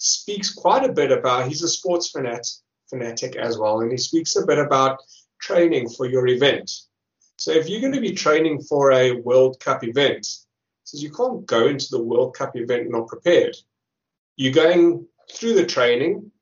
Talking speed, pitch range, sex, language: 175 wpm, 125-180 Hz, male, English